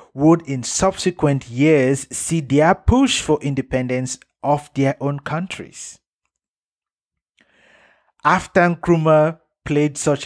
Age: 50-69